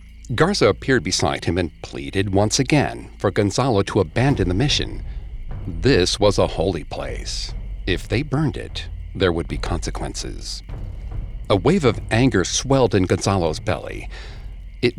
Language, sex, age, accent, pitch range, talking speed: English, male, 60-79, American, 90-110 Hz, 145 wpm